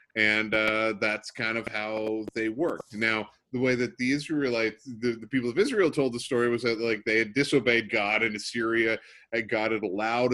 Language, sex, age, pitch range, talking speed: English, male, 30-49, 105-135 Hz, 205 wpm